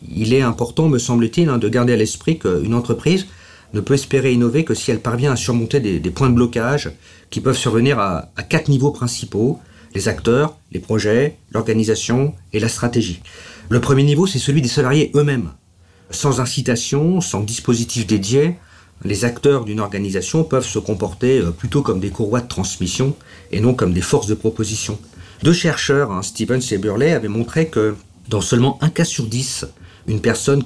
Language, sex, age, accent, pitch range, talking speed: French, male, 50-69, French, 110-140 Hz, 180 wpm